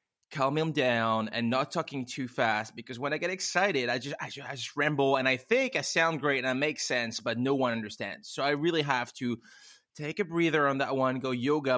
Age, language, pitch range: 20-39, English, 120-150 Hz